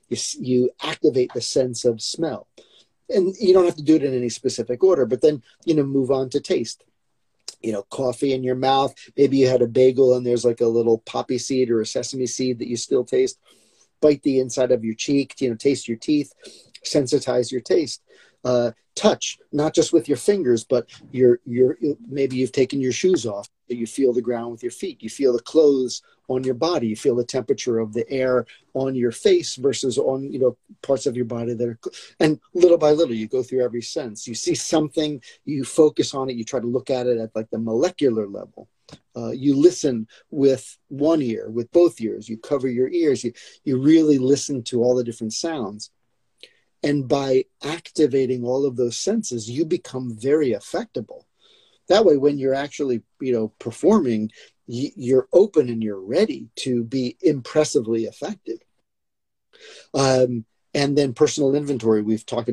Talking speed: 190 wpm